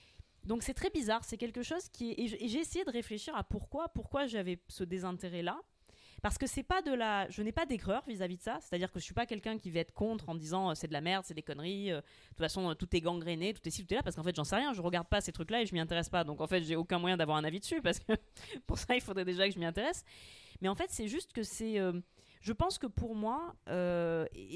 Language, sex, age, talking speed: French, female, 20-39, 285 wpm